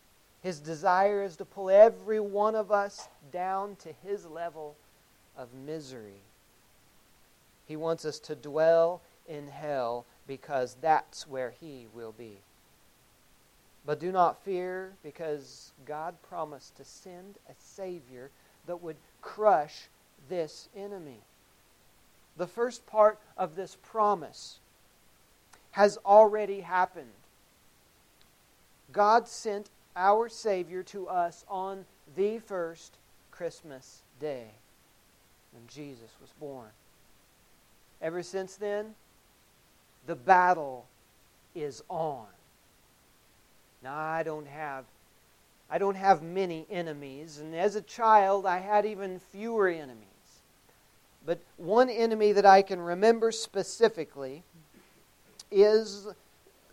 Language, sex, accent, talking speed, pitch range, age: English, male, American, 110 wpm, 150-200 Hz, 40-59